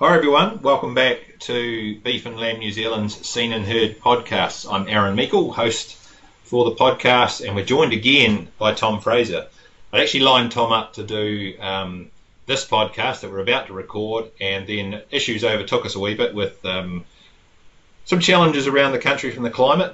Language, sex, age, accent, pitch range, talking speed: English, male, 30-49, Australian, 100-120 Hz, 185 wpm